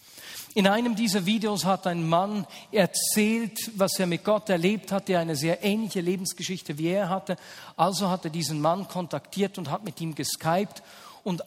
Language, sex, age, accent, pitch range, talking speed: German, male, 50-69, German, 150-210 Hz, 180 wpm